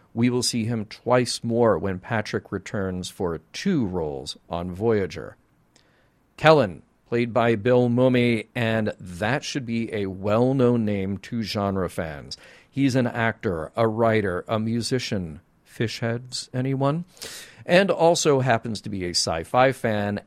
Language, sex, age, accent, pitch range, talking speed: English, male, 50-69, American, 100-130 Hz, 140 wpm